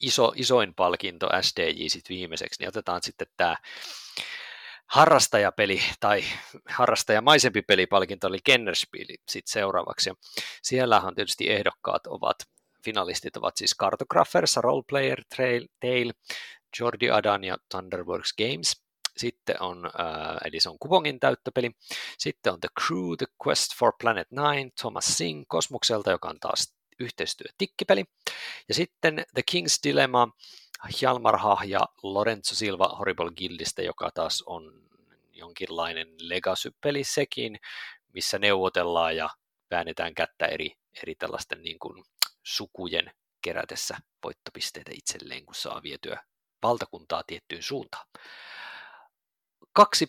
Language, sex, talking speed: Finnish, male, 115 wpm